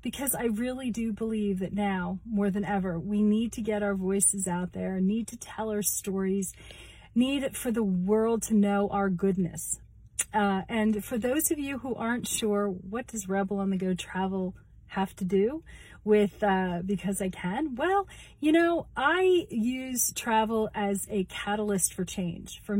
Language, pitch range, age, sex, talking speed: English, 195-235 Hz, 30-49, female, 175 wpm